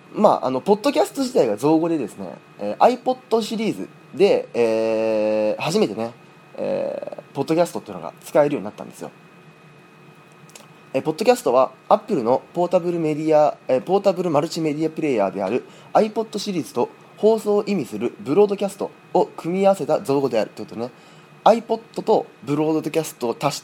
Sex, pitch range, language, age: male, 125-190 Hz, Japanese, 20-39